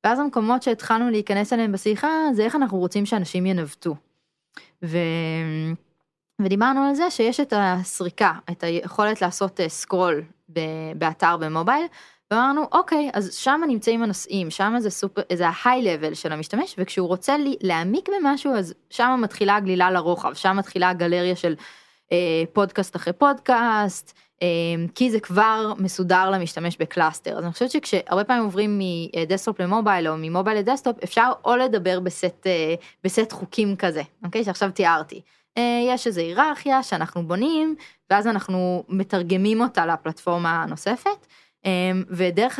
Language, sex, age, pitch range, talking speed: Hebrew, female, 20-39, 175-230 Hz, 135 wpm